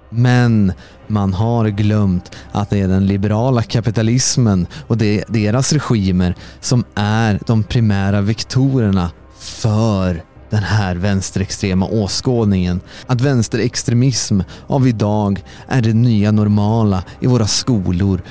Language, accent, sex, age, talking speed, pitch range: Swedish, native, male, 30-49, 120 wpm, 95-115 Hz